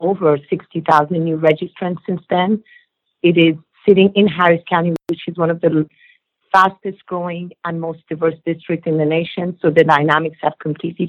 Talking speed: 170 wpm